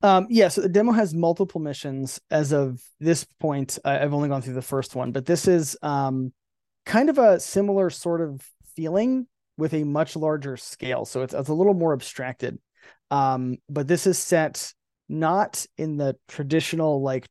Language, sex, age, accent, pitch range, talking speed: English, male, 20-39, American, 130-155 Hz, 180 wpm